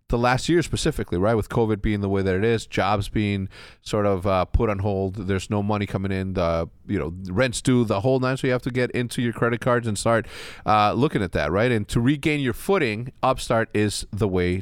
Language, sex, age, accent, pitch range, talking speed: English, male, 30-49, American, 105-135 Hz, 240 wpm